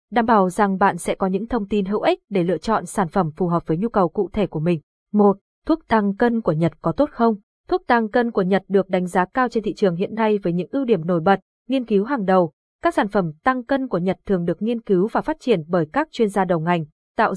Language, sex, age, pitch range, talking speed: Vietnamese, female, 20-39, 185-240 Hz, 275 wpm